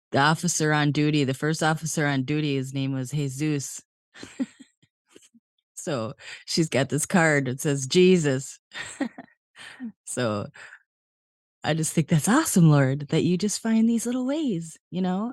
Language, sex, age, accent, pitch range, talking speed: English, female, 30-49, American, 135-175 Hz, 145 wpm